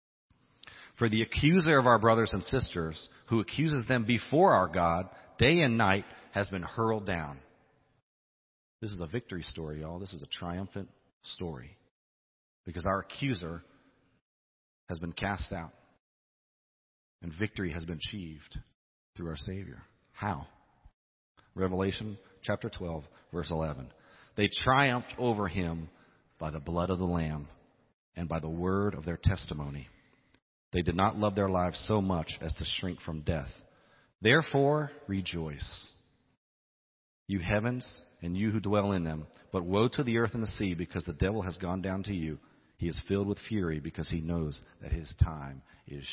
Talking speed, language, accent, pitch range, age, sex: 155 wpm, English, American, 85-110 Hz, 40-59, male